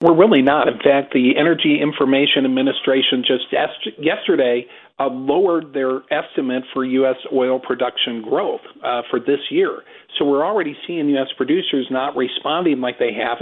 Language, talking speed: English, 160 wpm